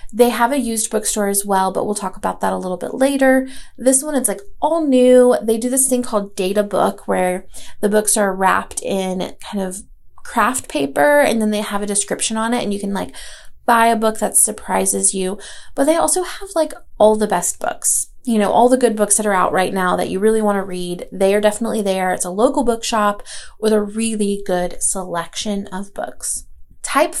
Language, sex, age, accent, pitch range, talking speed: English, female, 20-39, American, 200-250 Hz, 220 wpm